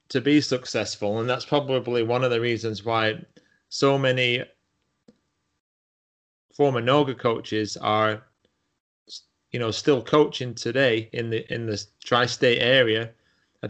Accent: British